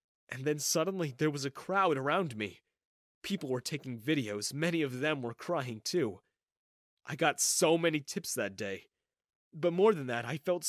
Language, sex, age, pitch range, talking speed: English, male, 30-49, 130-180 Hz, 180 wpm